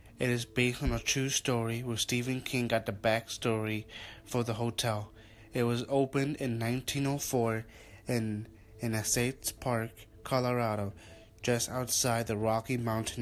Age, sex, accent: 20-39, male, American